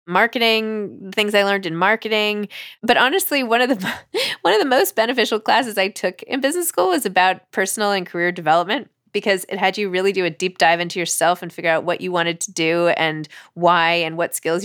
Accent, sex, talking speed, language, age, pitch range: American, female, 205 wpm, English, 20-39, 170-220 Hz